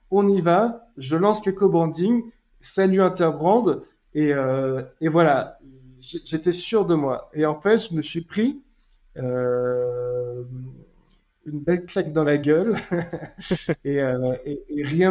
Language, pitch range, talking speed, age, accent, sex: French, 145-185 Hz, 140 wpm, 20-39, French, male